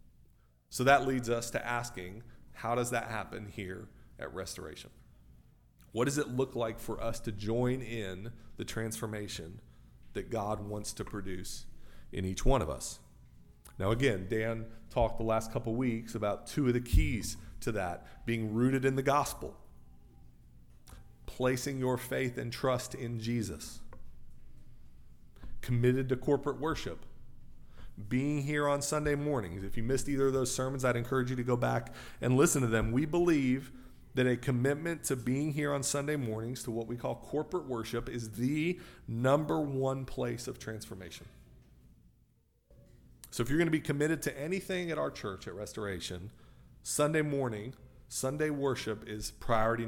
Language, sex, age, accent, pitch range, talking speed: English, male, 40-59, American, 105-135 Hz, 160 wpm